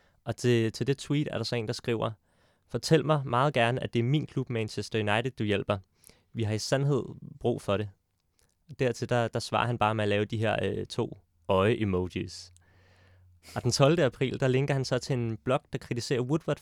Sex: male